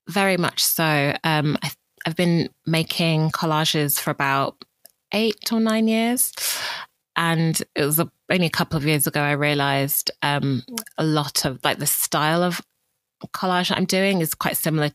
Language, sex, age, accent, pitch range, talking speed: English, female, 20-39, British, 140-170 Hz, 155 wpm